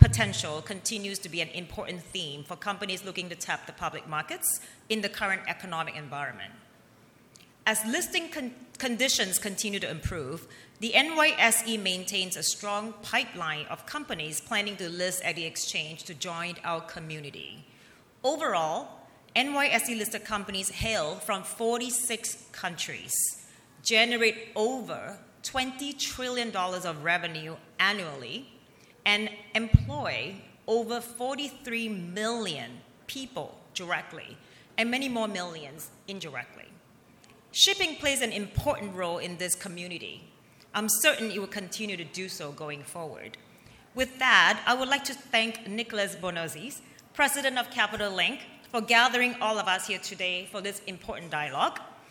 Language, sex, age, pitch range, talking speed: English, female, 30-49, 180-235 Hz, 130 wpm